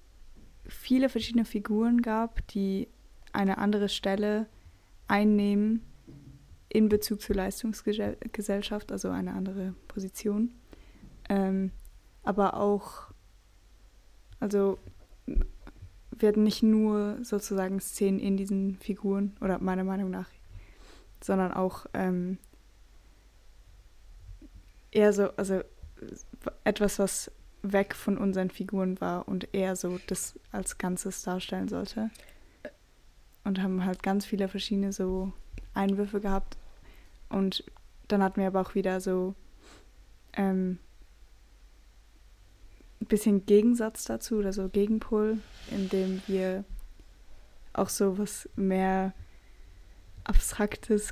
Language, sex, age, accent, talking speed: German, female, 20-39, German, 100 wpm